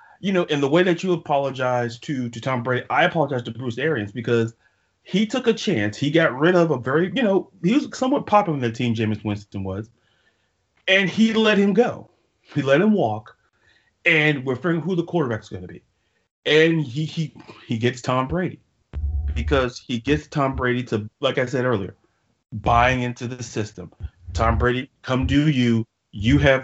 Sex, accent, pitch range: male, American, 110-155 Hz